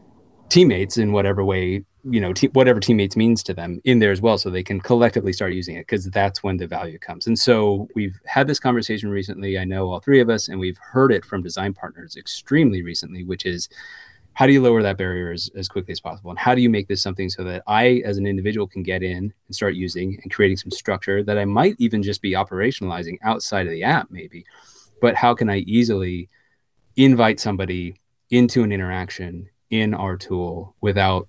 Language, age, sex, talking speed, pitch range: English, 30-49, male, 215 wpm, 90-110 Hz